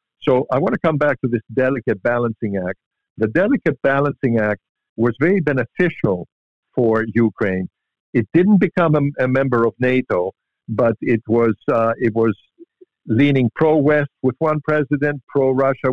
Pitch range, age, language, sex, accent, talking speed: 115-145 Hz, 50-69, English, male, American, 150 wpm